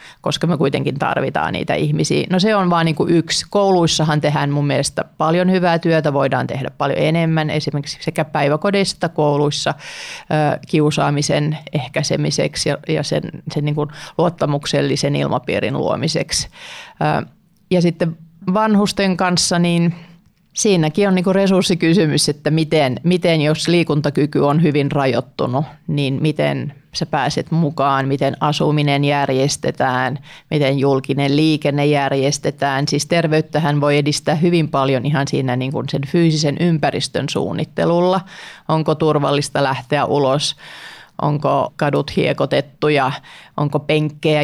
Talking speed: 120 wpm